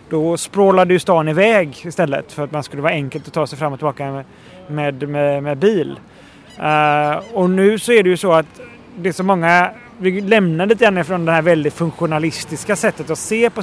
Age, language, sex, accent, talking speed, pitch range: 30-49, Swedish, male, native, 215 wpm, 150-185 Hz